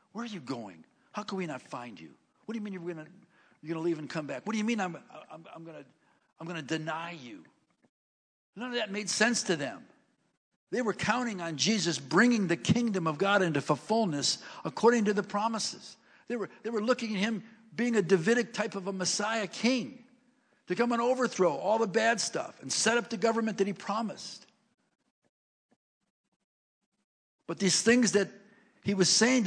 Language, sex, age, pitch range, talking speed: English, male, 60-79, 170-225 Hz, 195 wpm